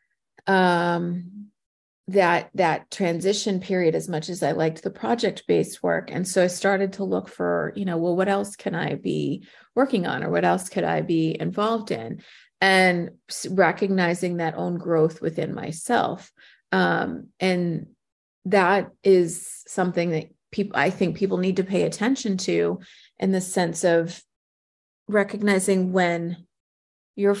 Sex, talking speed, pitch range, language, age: female, 145 wpm, 175-200 Hz, English, 30-49